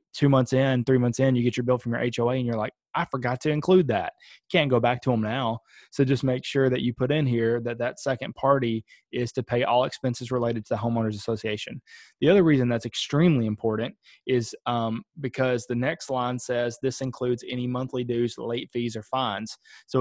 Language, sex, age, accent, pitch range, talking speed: English, male, 20-39, American, 115-130 Hz, 220 wpm